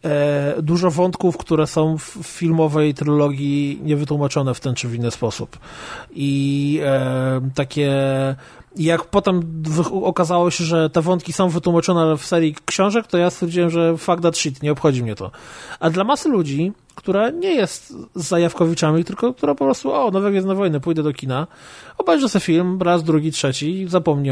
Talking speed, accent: 170 wpm, native